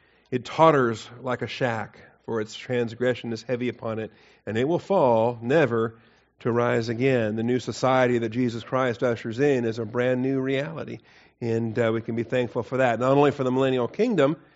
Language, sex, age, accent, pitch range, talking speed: English, male, 40-59, American, 115-140 Hz, 195 wpm